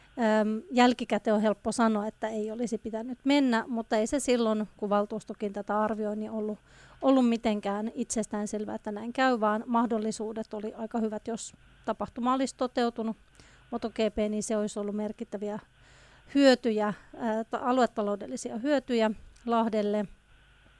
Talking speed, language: 125 wpm, Finnish